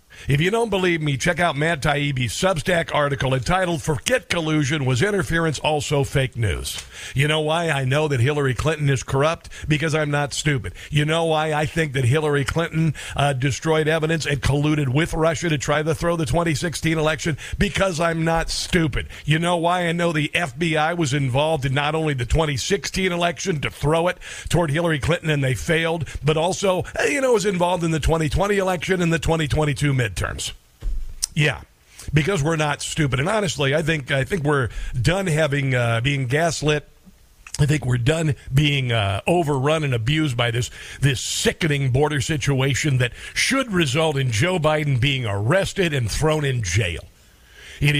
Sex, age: male, 50-69